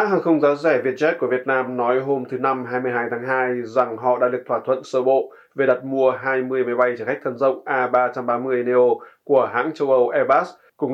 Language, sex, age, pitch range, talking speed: Vietnamese, male, 20-39, 120-130 Hz, 230 wpm